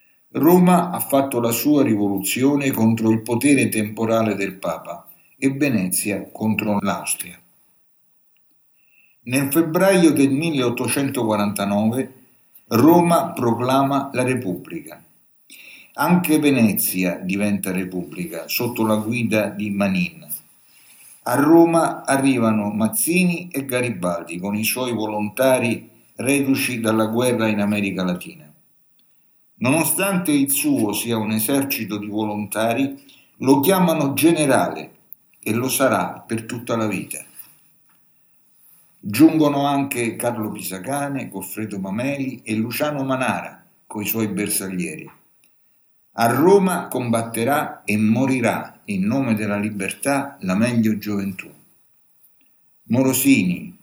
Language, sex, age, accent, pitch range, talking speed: Italian, male, 60-79, native, 105-140 Hz, 105 wpm